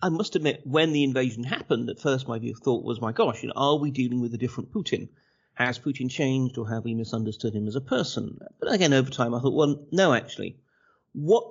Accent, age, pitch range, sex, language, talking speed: British, 50-69, 115-150 Hz, male, English, 240 wpm